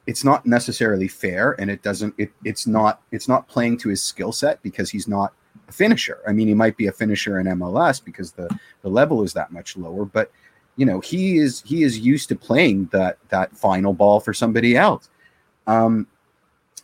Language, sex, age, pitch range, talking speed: English, male, 30-49, 100-125 Hz, 205 wpm